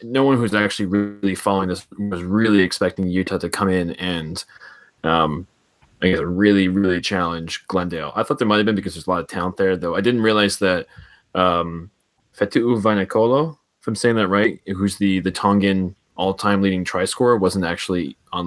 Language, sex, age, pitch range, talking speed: English, male, 20-39, 90-100 Hz, 190 wpm